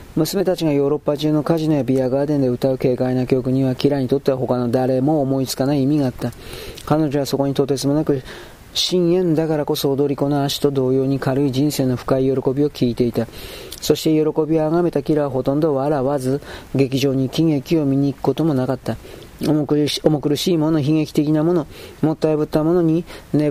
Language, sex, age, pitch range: Japanese, male, 40-59, 135-155 Hz